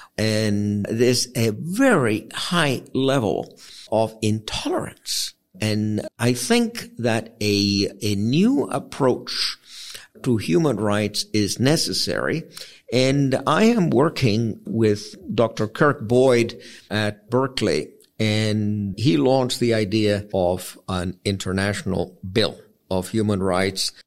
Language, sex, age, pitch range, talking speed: English, male, 50-69, 95-115 Hz, 105 wpm